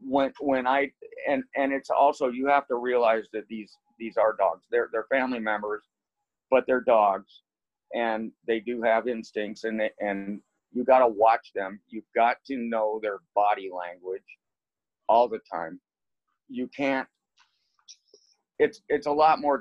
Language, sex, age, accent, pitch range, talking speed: English, male, 50-69, American, 105-130 Hz, 160 wpm